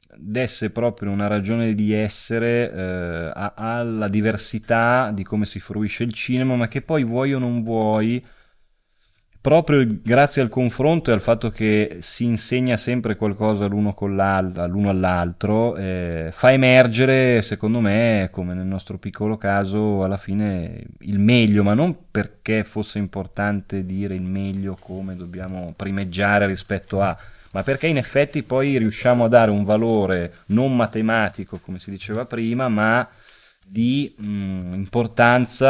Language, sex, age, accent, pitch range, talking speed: Italian, male, 20-39, native, 100-115 Hz, 140 wpm